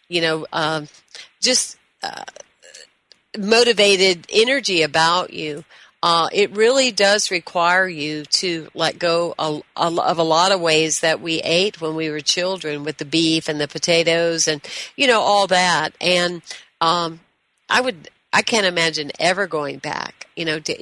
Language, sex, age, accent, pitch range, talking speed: English, female, 50-69, American, 160-200 Hz, 155 wpm